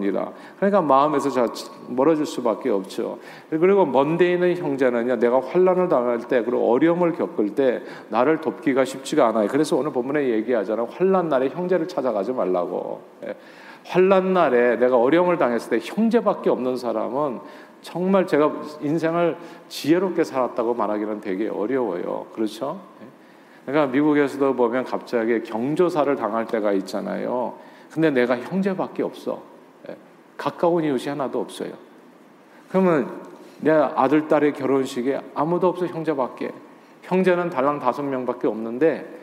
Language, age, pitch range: Korean, 40-59, 125-175 Hz